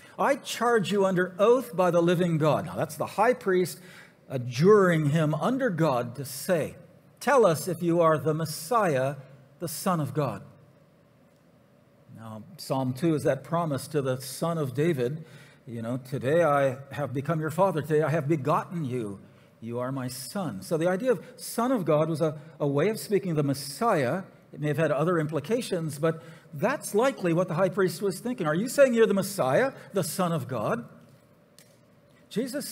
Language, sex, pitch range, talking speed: English, male, 145-185 Hz, 185 wpm